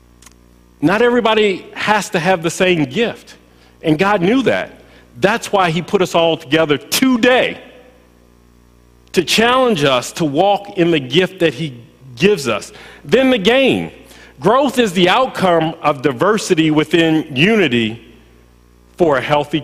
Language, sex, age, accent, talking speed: English, male, 40-59, American, 140 wpm